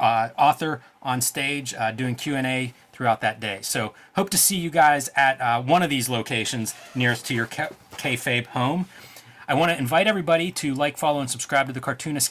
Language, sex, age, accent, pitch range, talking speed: English, male, 30-49, American, 120-150 Hz, 195 wpm